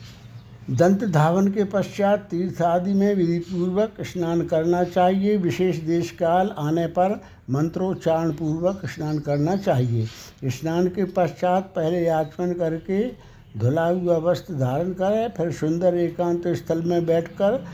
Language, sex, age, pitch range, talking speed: Hindi, male, 60-79, 155-185 Hz, 130 wpm